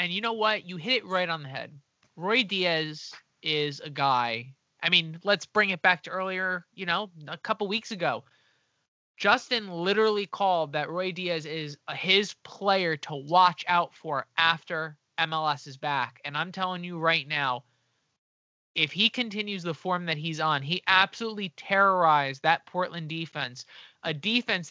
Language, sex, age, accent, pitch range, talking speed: English, male, 20-39, American, 150-200 Hz, 170 wpm